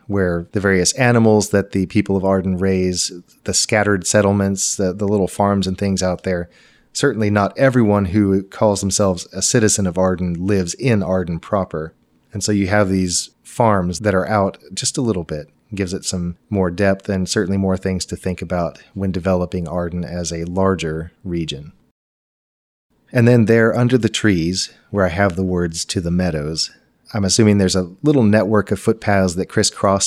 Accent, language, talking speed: American, English, 180 wpm